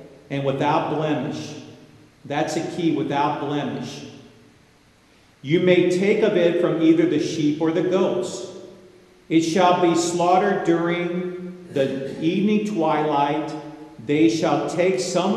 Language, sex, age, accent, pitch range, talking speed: English, male, 50-69, American, 145-175 Hz, 125 wpm